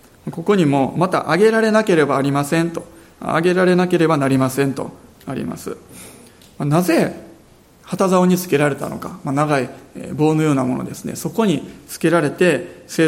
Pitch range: 140-180 Hz